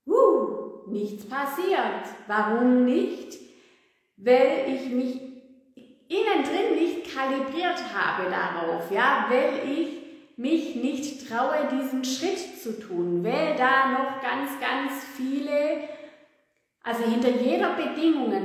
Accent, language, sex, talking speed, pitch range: German, German, female, 105 wpm, 245-320 Hz